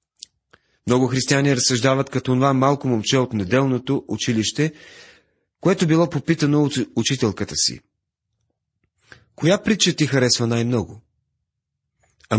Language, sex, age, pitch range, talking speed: Bulgarian, male, 40-59, 100-130 Hz, 105 wpm